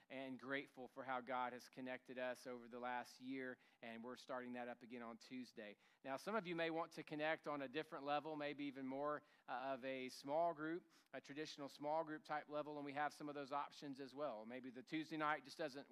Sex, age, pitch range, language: male, 40-59, 125-155 Hz, English